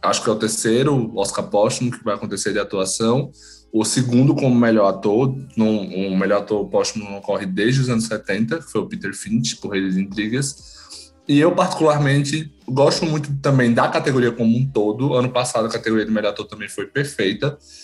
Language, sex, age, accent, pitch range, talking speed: Portuguese, male, 20-39, Brazilian, 110-135 Hz, 190 wpm